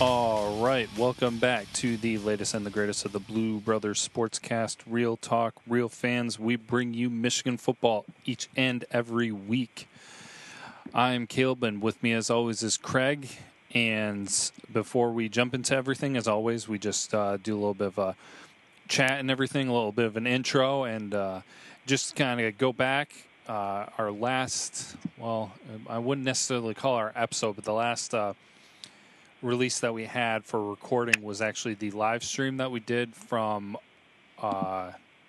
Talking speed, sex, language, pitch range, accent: 170 wpm, male, English, 105-125 Hz, American